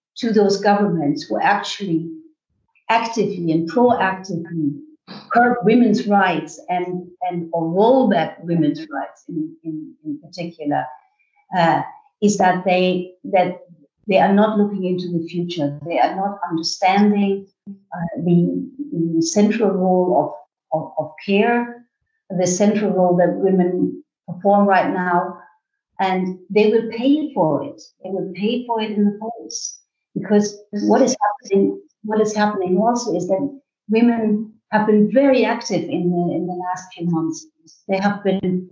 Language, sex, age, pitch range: English, female, 50-69, 180-220 Hz